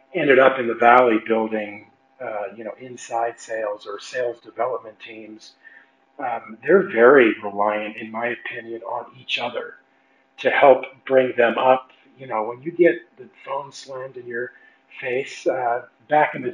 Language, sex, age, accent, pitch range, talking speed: English, male, 40-59, American, 115-135 Hz, 165 wpm